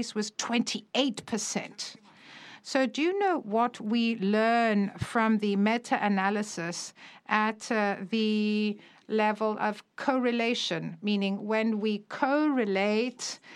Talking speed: 100 wpm